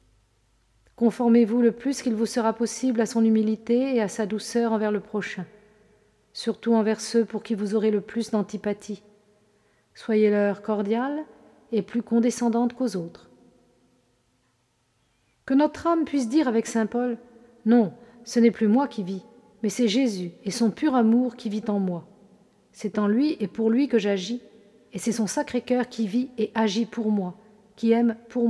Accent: French